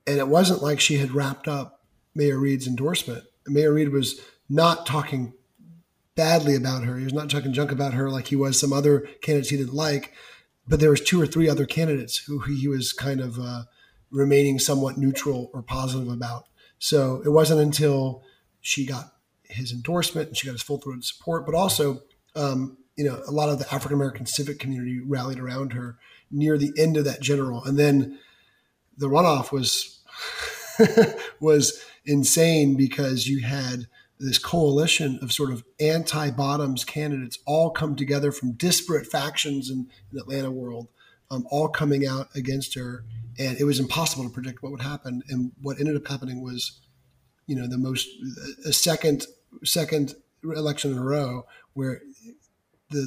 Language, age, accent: English, 30-49, American